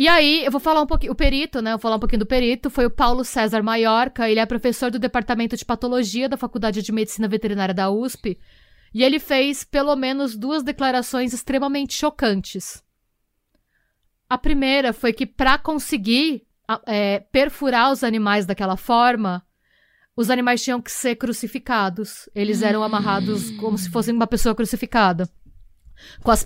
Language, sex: Portuguese, female